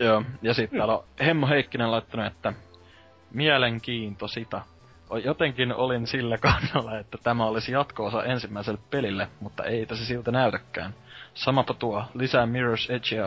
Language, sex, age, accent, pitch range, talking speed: Finnish, male, 20-39, native, 100-120 Hz, 140 wpm